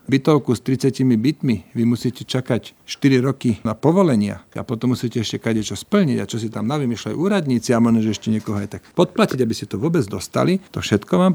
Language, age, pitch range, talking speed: Slovak, 50-69, 115-140 Hz, 205 wpm